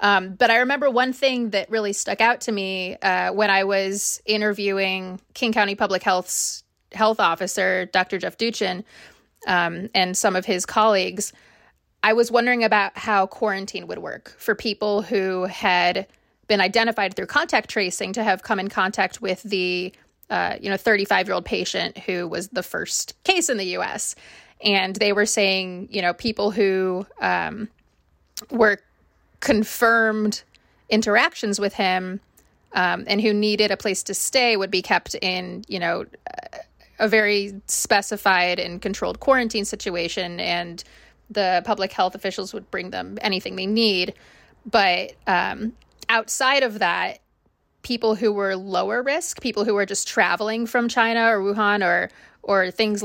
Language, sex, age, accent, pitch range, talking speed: English, female, 20-39, American, 190-225 Hz, 155 wpm